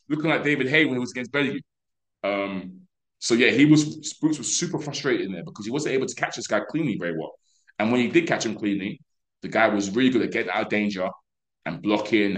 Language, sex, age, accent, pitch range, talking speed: English, male, 20-39, British, 95-120 Hz, 240 wpm